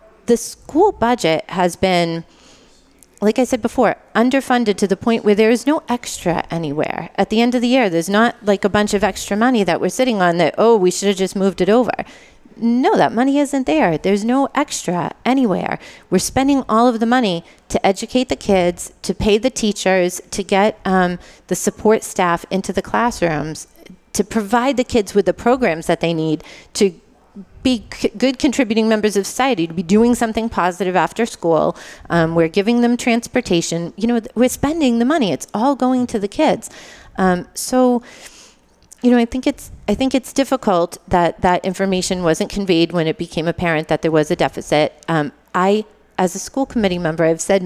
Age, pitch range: 30-49, 180-235 Hz